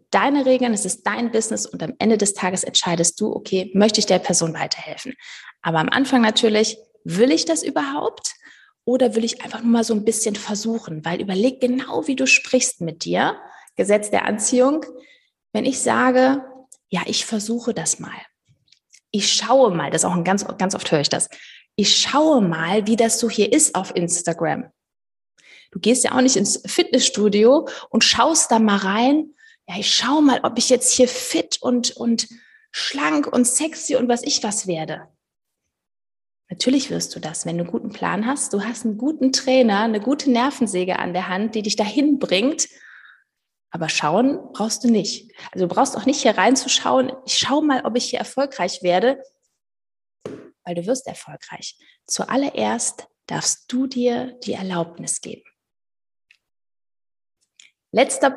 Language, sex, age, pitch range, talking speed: German, female, 20-39, 200-260 Hz, 170 wpm